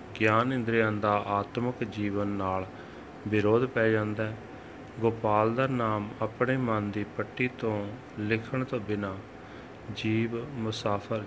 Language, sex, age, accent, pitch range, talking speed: English, male, 30-49, Indian, 105-120 Hz, 120 wpm